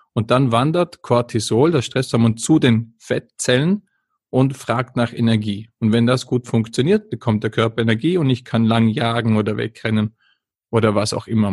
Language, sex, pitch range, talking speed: German, male, 115-130 Hz, 170 wpm